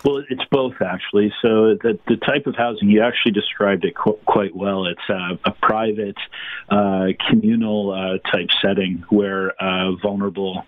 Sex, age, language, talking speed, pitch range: male, 40-59, English, 155 wpm, 95-105 Hz